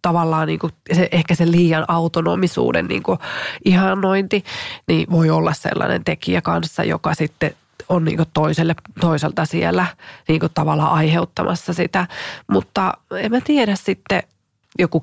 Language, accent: Finnish, native